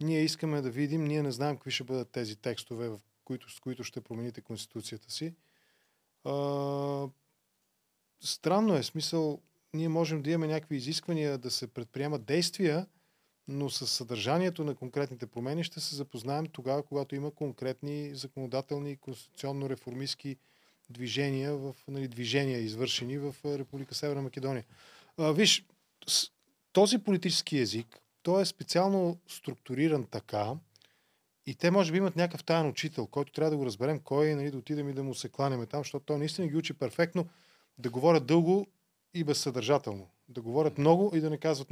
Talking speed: 160 wpm